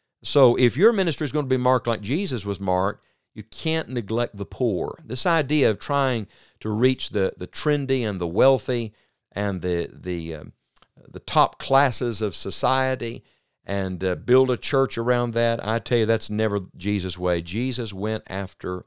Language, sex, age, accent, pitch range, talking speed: English, male, 50-69, American, 100-135 Hz, 170 wpm